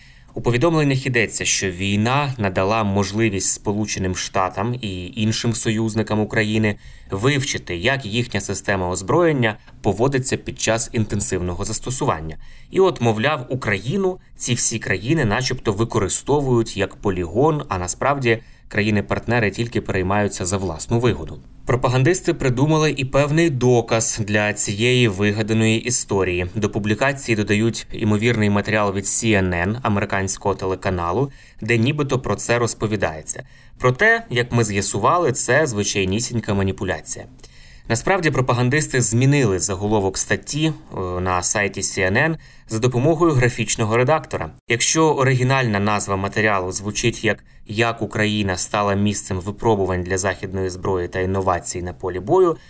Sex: male